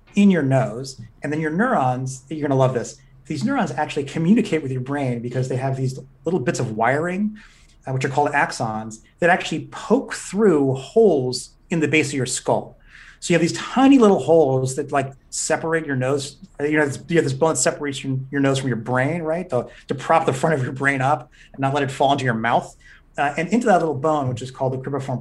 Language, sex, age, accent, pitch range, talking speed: English, male, 30-49, American, 130-160 Hz, 230 wpm